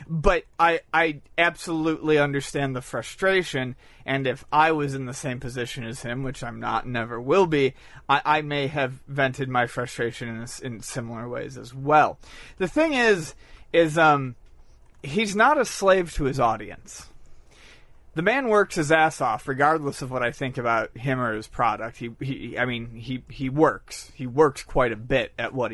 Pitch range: 125-170 Hz